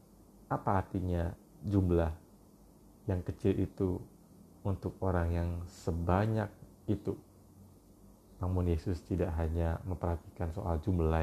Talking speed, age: 95 wpm, 30-49